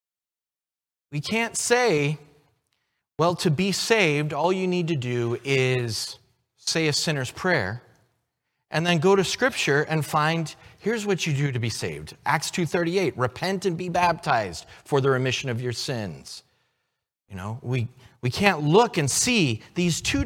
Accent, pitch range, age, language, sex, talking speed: American, 120-180 Hz, 30-49, English, male, 155 wpm